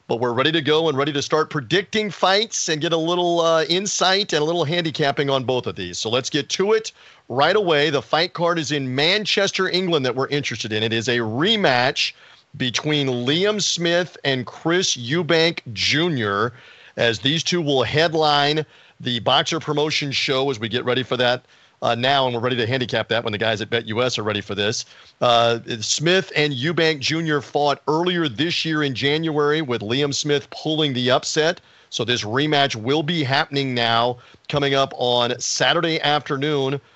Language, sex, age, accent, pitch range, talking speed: English, male, 40-59, American, 125-155 Hz, 185 wpm